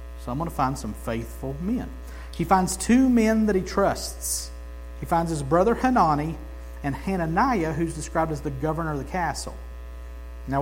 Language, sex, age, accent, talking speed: English, male, 50-69, American, 175 wpm